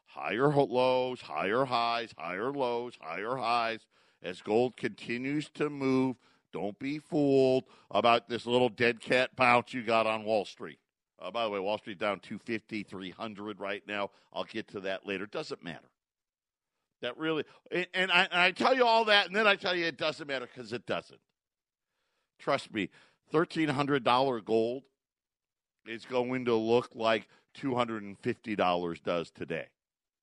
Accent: American